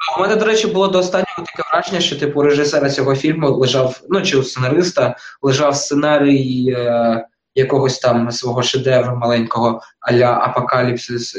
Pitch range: 135-180 Hz